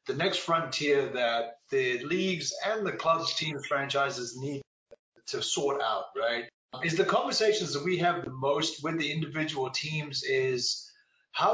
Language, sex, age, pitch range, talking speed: English, male, 30-49, 150-210 Hz, 155 wpm